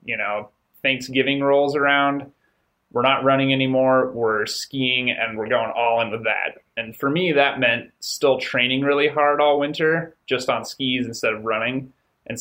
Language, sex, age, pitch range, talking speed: English, male, 30-49, 110-135 Hz, 170 wpm